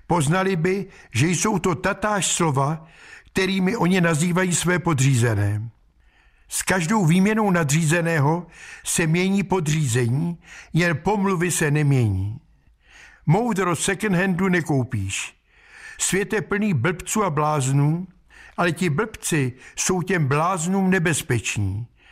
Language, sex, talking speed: Czech, male, 110 wpm